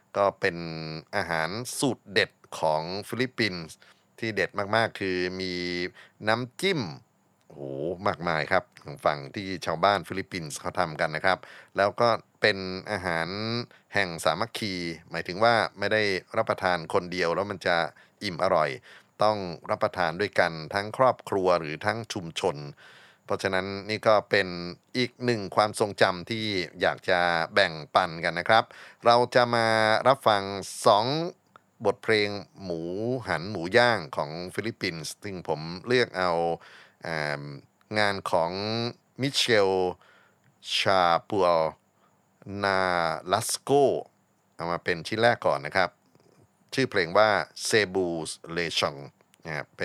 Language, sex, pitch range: Thai, male, 85-110 Hz